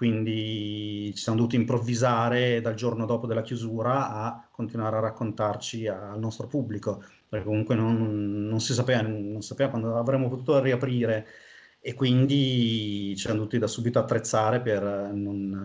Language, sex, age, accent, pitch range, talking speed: Italian, male, 30-49, native, 110-125 Hz, 155 wpm